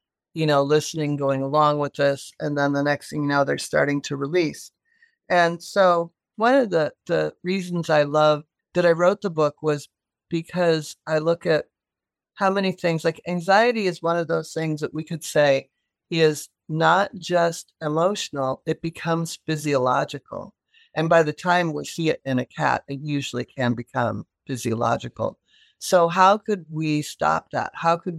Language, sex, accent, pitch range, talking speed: English, male, American, 145-170 Hz, 170 wpm